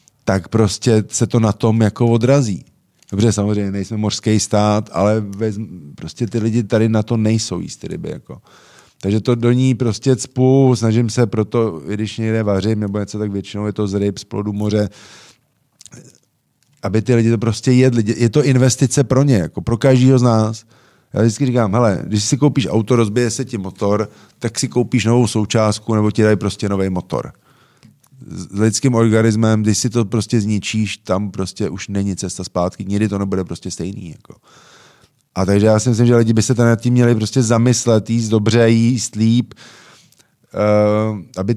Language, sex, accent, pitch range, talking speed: Czech, male, native, 105-120 Hz, 185 wpm